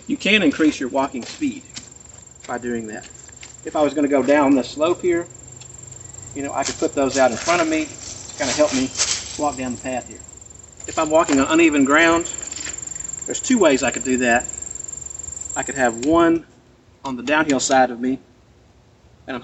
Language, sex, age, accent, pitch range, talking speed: English, male, 40-59, American, 120-150 Hz, 205 wpm